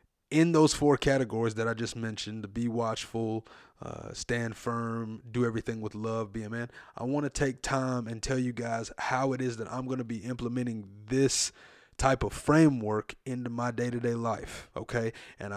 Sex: male